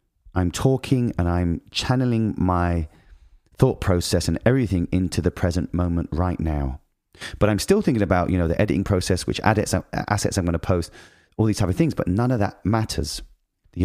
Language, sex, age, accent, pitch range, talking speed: English, male, 30-49, British, 85-105 Hz, 185 wpm